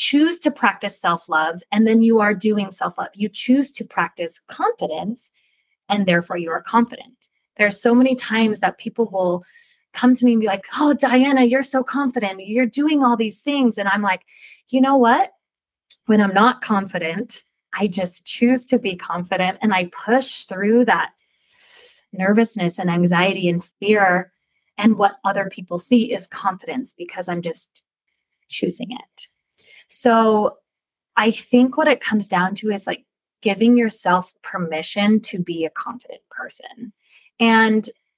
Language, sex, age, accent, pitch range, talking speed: English, female, 20-39, American, 185-240 Hz, 160 wpm